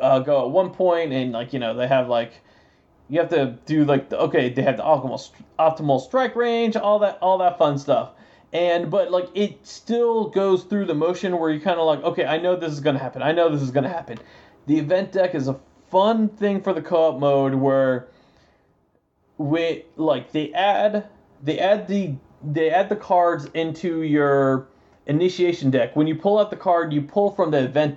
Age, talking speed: 30-49, 210 wpm